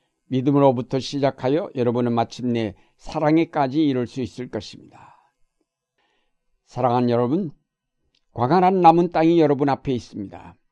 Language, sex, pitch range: Korean, male, 120-150 Hz